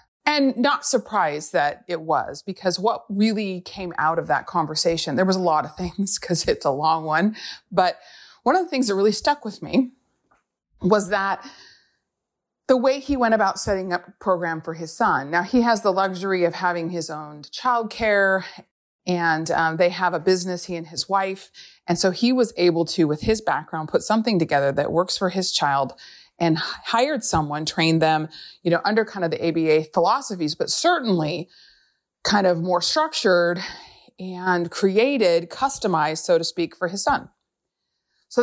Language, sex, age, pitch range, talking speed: English, female, 30-49, 160-210 Hz, 180 wpm